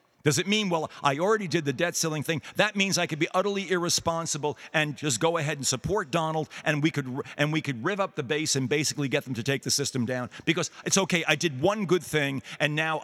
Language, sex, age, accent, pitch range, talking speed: English, male, 50-69, American, 130-165 Hz, 240 wpm